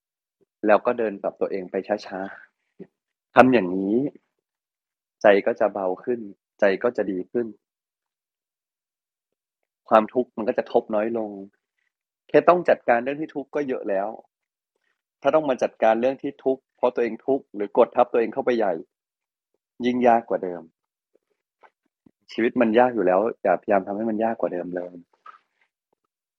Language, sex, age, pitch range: Thai, male, 20-39, 95-120 Hz